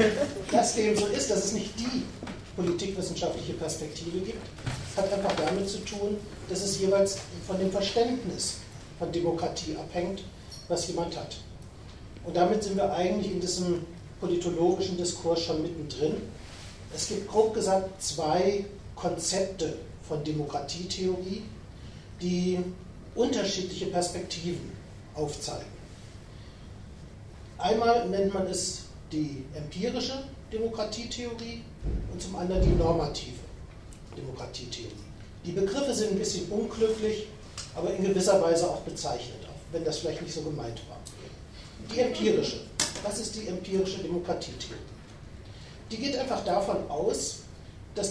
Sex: male